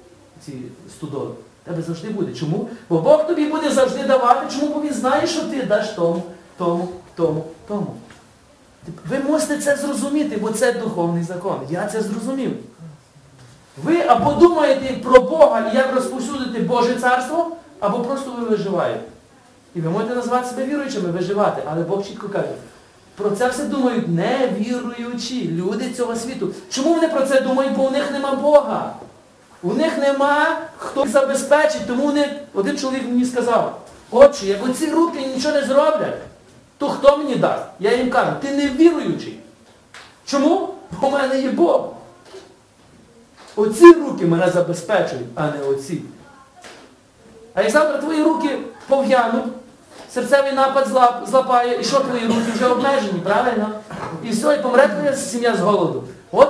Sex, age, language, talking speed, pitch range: male, 40-59, Ukrainian, 155 wpm, 205-280 Hz